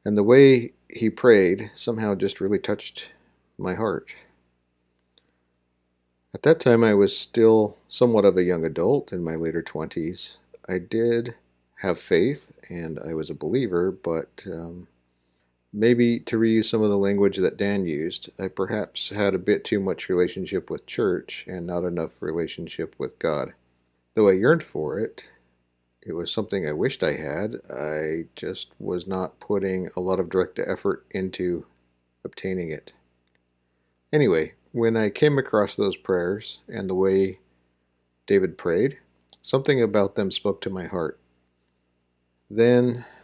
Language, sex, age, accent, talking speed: English, male, 50-69, American, 150 wpm